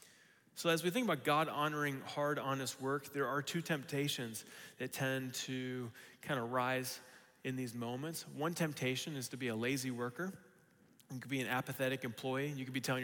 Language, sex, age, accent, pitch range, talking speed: English, male, 30-49, American, 125-150 Hz, 190 wpm